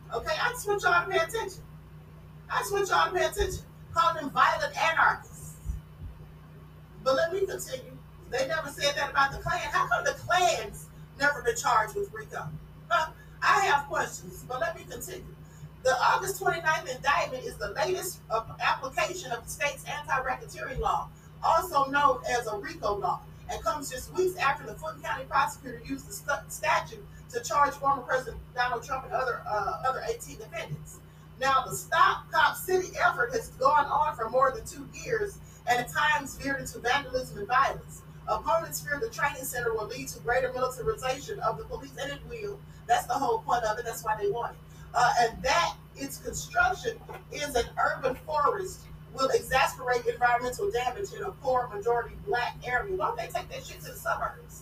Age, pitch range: 40-59, 240-365 Hz